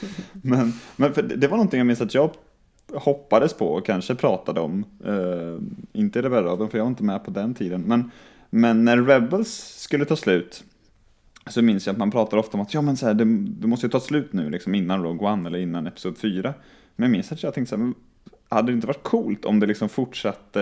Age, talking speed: 20-39, 230 wpm